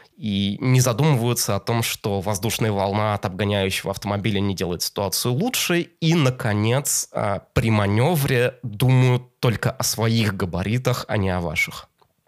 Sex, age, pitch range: male, 20-39, 100-125 Hz